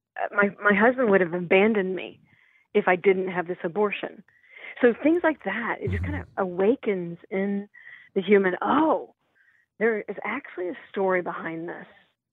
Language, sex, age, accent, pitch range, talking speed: English, female, 40-59, American, 180-230 Hz, 160 wpm